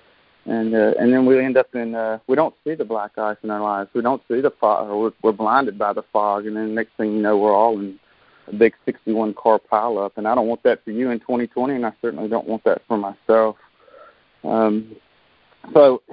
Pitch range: 105-115 Hz